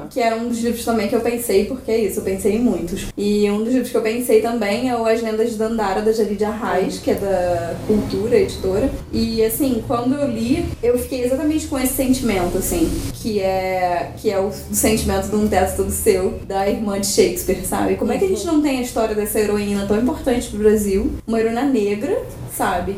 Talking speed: 225 wpm